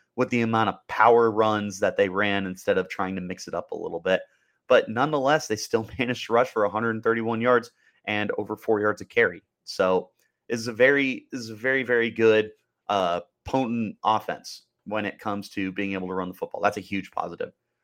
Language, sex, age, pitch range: English, male, 30-49, 100-125 Hz